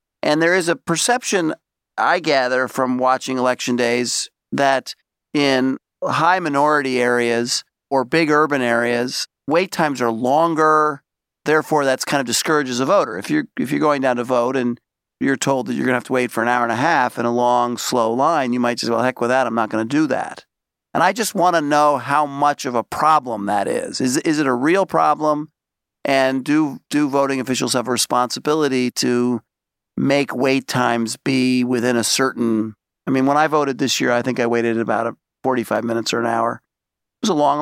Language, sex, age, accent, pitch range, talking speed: English, male, 40-59, American, 120-150 Hz, 200 wpm